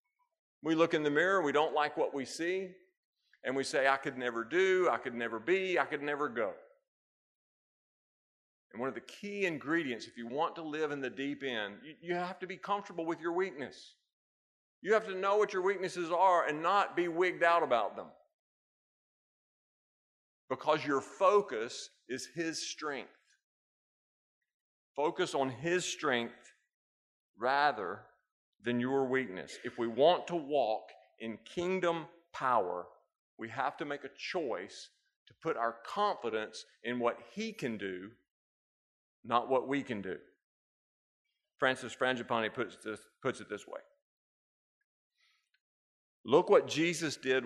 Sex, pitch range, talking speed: male, 120-180 Hz, 150 wpm